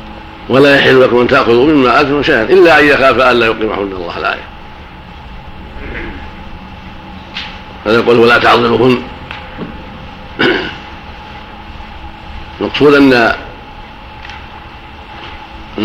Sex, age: male, 60-79